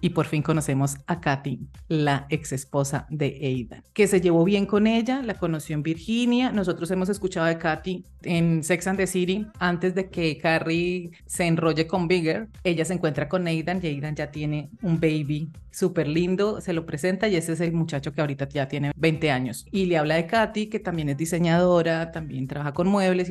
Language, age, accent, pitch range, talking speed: Spanish, 30-49, Colombian, 160-200 Hz, 205 wpm